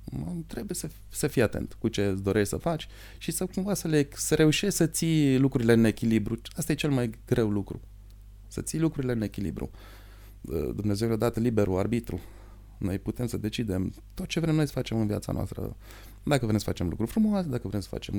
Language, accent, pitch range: Romanian, native, 100-120 Hz